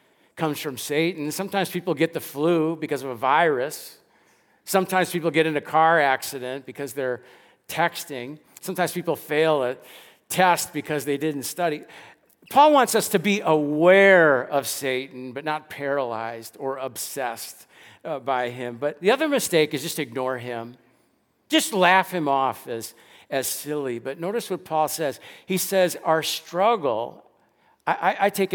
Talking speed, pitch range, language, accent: 155 wpm, 140-175 Hz, English, American